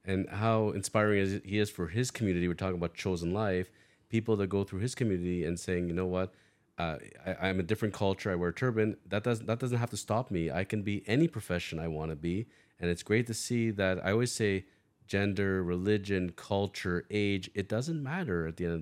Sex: male